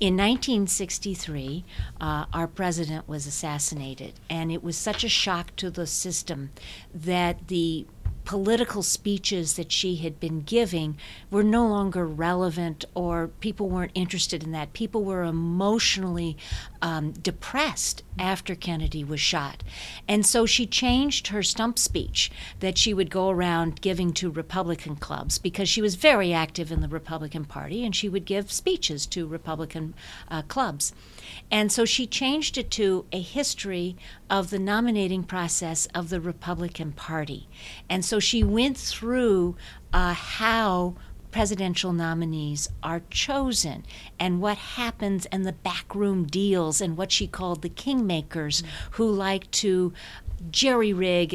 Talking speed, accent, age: 145 wpm, American, 50-69